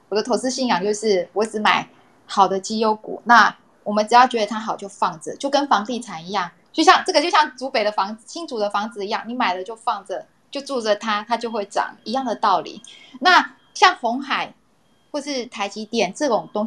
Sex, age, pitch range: female, 20-39, 195-250 Hz